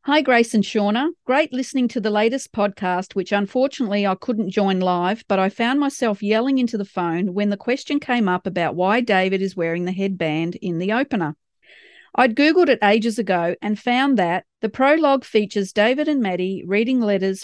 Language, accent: English, Australian